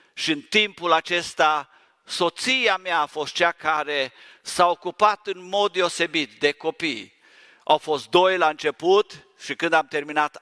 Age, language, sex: 50-69, Romanian, male